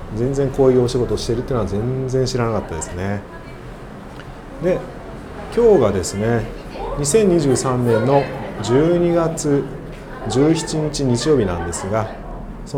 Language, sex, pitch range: Japanese, male, 100-140 Hz